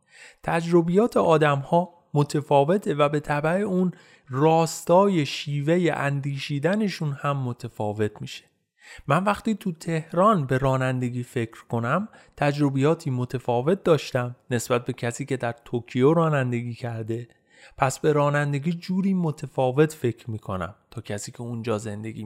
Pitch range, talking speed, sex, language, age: 130-170 Hz, 120 wpm, male, Persian, 30-49